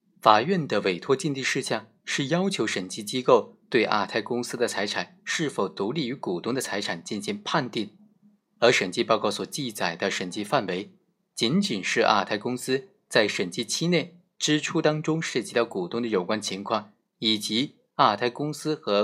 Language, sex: Chinese, male